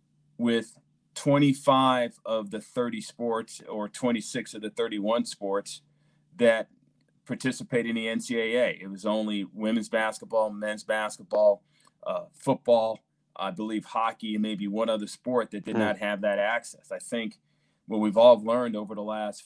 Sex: male